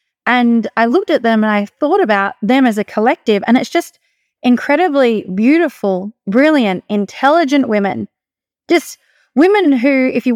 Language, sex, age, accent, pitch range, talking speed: English, female, 20-39, Australian, 215-275 Hz, 150 wpm